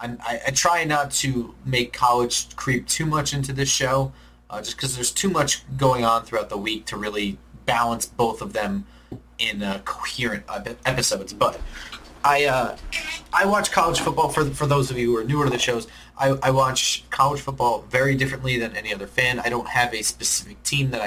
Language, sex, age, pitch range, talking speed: English, male, 30-49, 105-135 Hz, 200 wpm